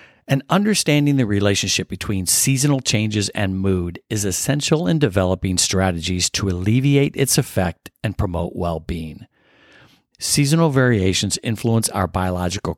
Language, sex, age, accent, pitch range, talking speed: English, male, 50-69, American, 90-115 Hz, 120 wpm